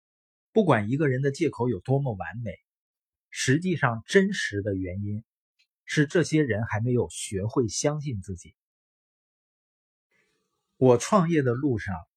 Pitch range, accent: 100-150 Hz, native